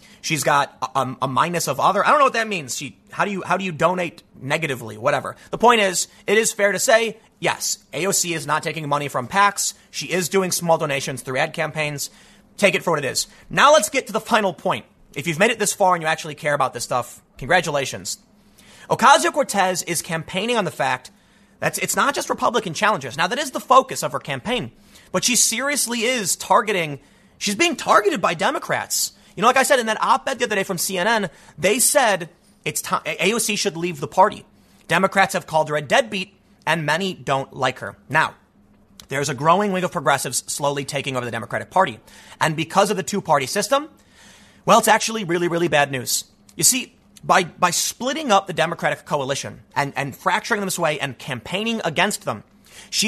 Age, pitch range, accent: 30-49, 150-210 Hz, American